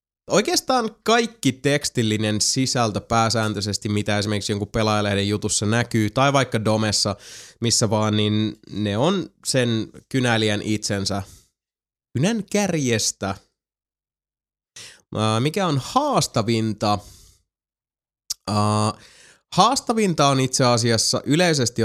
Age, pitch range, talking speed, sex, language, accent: 20-39, 105-125 Hz, 90 wpm, male, Finnish, native